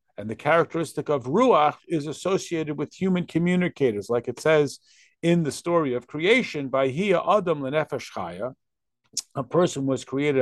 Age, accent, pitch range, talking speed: 50-69, American, 125-160 Hz, 150 wpm